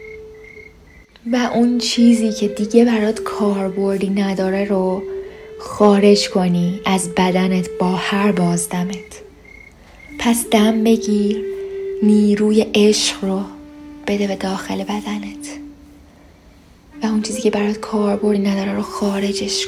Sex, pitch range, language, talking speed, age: female, 195-260 Hz, Persian, 105 wpm, 20-39